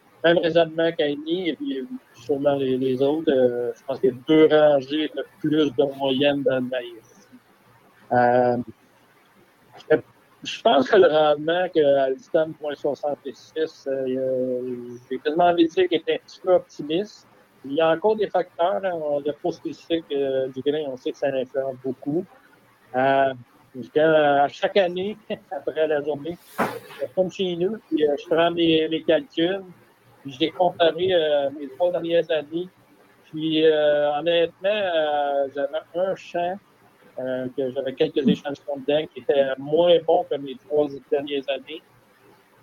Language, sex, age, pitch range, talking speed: French, male, 60-79, 135-165 Hz, 165 wpm